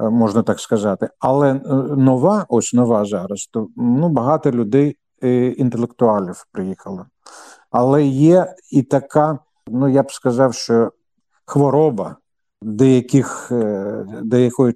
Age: 50-69